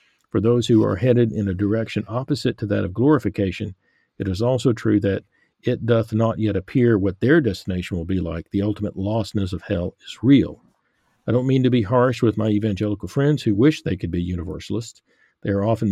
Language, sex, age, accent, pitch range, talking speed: English, male, 50-69, American, 100-120 Hz, 205 wpm